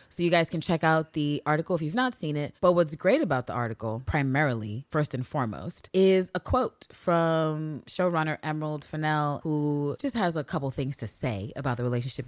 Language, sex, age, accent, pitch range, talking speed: English, female, 30-49, American, 135-185 Hz, 200 wpm